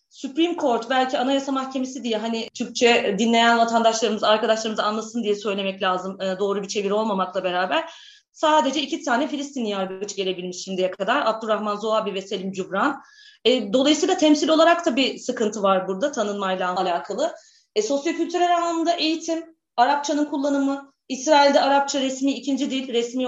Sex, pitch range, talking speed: female, 210-275 Hz, 145 wpm